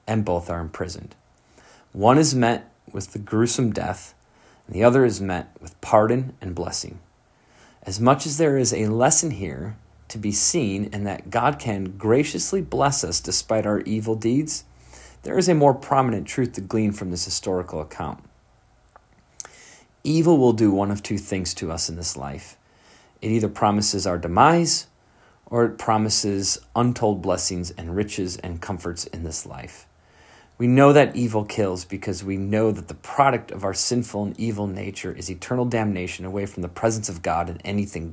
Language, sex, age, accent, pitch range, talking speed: English, male, 40-59, American, 95-120 Hz, 175 wpm